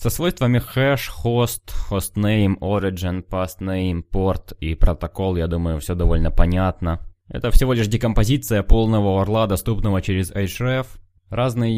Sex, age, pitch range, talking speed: male, 20-39, 95-120 Hz, 130 wpm